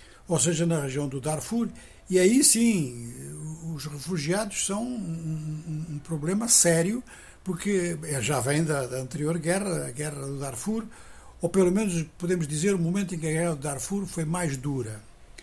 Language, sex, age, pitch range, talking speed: Portuguese, male, 60-79, 150-190 Hz, 170 wpm